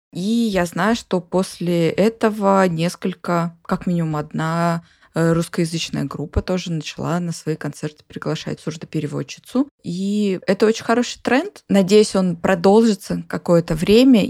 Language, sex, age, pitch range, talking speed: Russian, female, 20-39, 165-195 Hz, 120 wpm